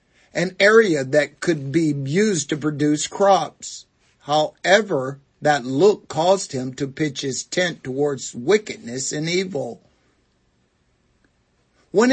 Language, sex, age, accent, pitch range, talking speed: English, male, 60-79, American, 130-180 Hz, 115 wpm